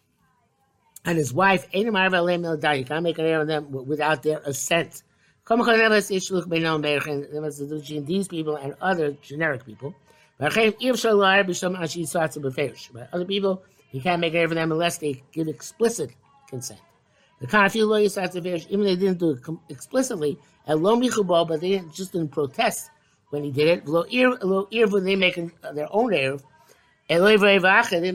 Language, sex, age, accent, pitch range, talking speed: English, male, 60-79, American, 140-185 Hz, 115 wpm